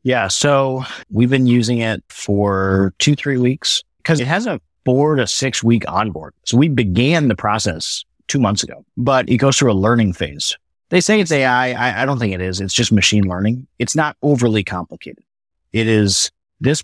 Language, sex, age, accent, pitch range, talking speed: English, male, 30-49, American, 100-135 Hz, 195 wpm